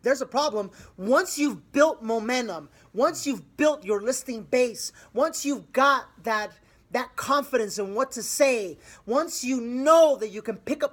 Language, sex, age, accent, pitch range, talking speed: English, male, 30-49, American, 225-290 Hz, 170 wpm